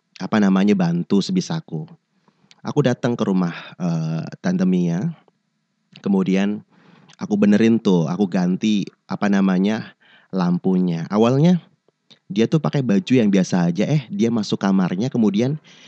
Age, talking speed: 30-49, 125 wpm